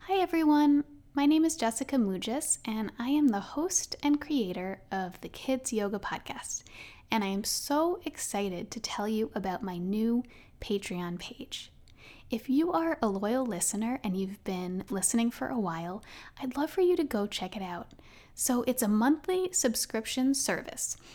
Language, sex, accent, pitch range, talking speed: English, female, American, 200-270 Hz, 170 wpm